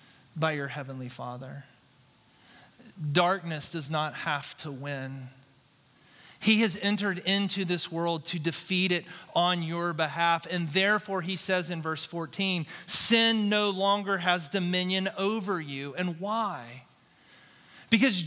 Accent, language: American, English